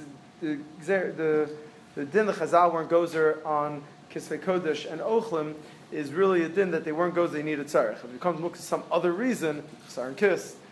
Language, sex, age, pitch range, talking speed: English, male, 30-49, 145-175 Hz, 195 wpm